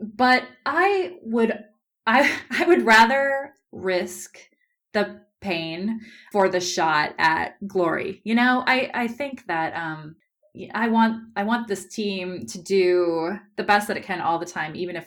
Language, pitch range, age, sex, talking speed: English, 170-240 Hz, 20-39, female, 160 wpm